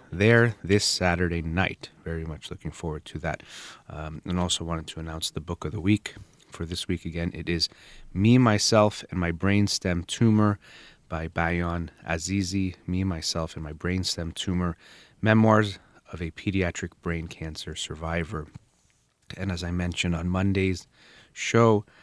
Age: 30-49